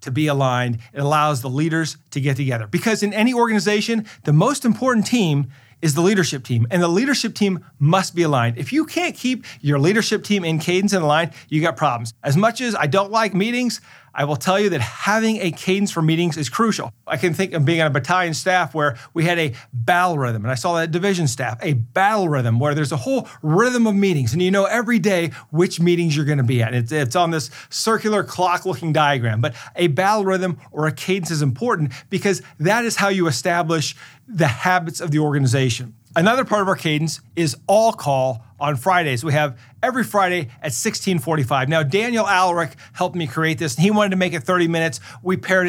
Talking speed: 215 wpm